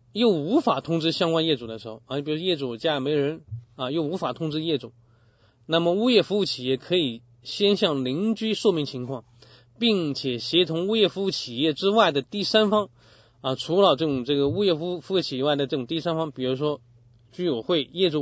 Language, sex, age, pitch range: Chinese, male, 20-39, 120-160 Hz